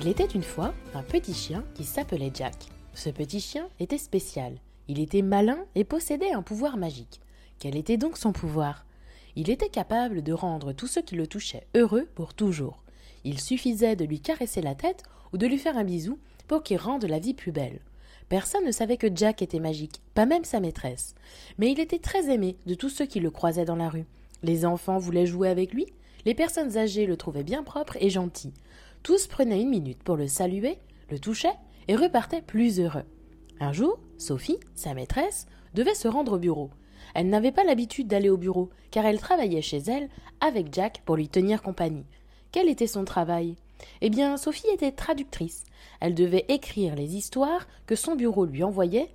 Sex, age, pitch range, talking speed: female, 20-39, 170-275 Hz, 195 wpm